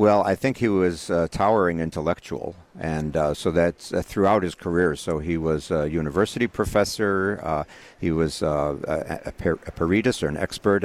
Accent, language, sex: American, English, male